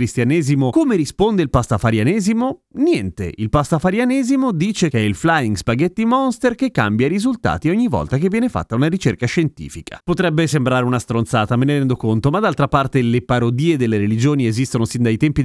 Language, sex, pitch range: Italian, male, 115-160 Hz